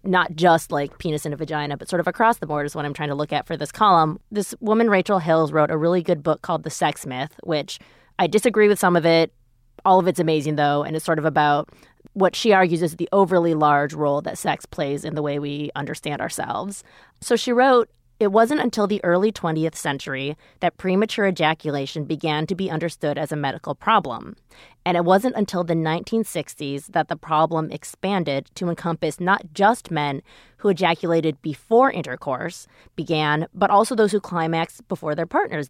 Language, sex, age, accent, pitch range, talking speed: English, female, 20-39, American, 155-205 Hz, 200 wpm